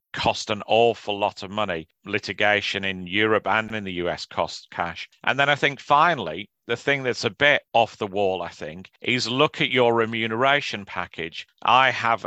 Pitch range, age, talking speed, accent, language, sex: 95-115 Hz, 40-59, 185 wpm, British, English, male